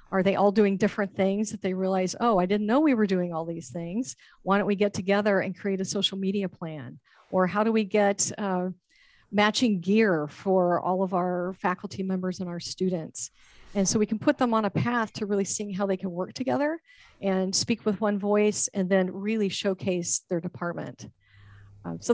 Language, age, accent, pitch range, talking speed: English, 40-59, American, 185-215 Hz, 210 wpm